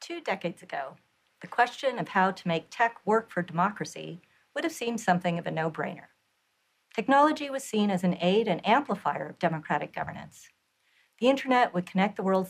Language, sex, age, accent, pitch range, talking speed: Danish, female, 50-69, American, 175-225 Hz, 180 wpm